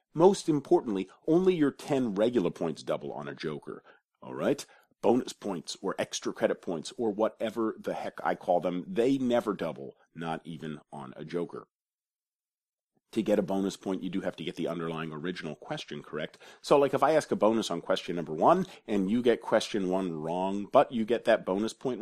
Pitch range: 90-140 Hz